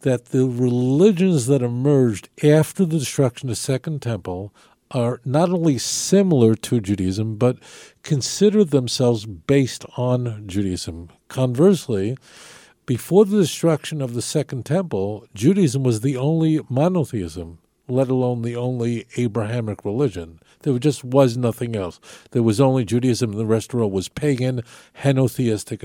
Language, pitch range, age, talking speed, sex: English, 115-155 Hz, 50-69, 140 wpm, male